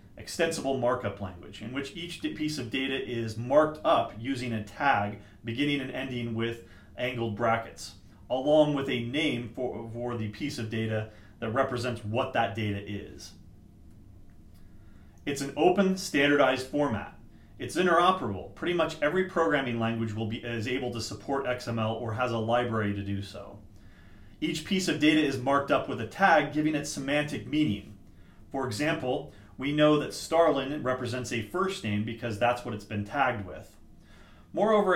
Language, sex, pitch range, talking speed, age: English, male, 105-145 Hz, 165 wpm, 30-49